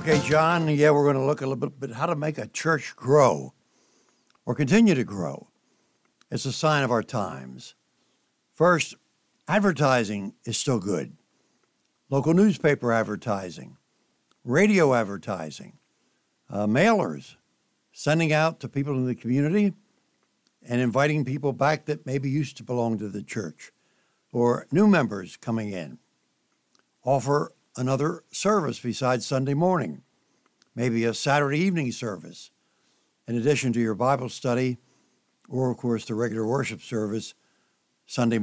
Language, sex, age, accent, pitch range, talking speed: English, male, 60-79, American, 120-155 Hz, 135 wpm